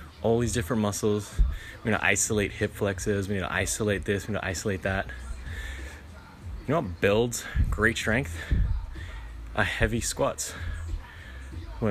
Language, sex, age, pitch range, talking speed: English, male, 20-39, 85-110 Hz, 150 wpm